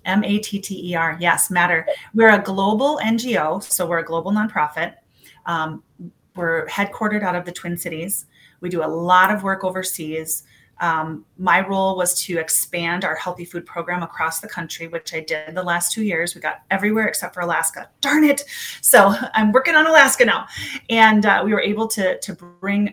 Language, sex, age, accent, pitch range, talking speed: English, female, 30-49, American, 170-200 Hz, 180 wpm